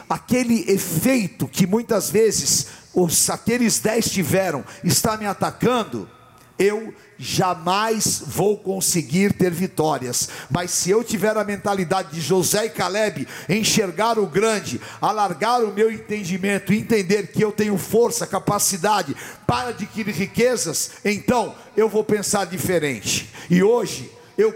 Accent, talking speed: Brazilian, 125 wpm